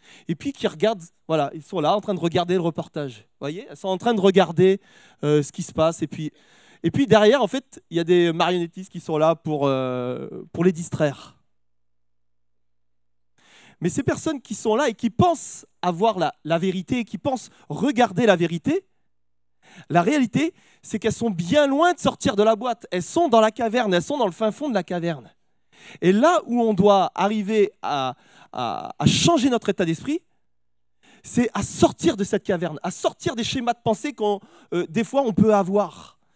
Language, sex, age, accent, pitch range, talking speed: French, male, 20-39, French, 165-225 Hz, 205 wpm